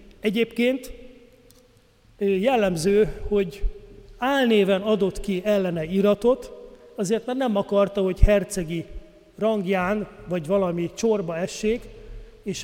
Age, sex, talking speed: 30-49, male, 95 wpm